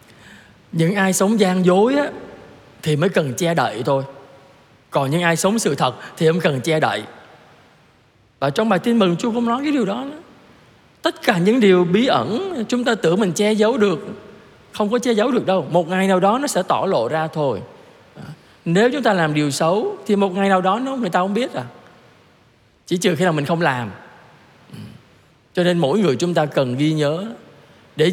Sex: male